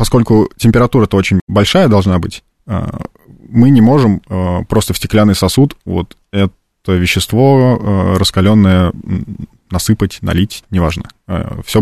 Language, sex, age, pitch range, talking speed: Russian, male, 20-39, 95-115 Hz, 105 wpm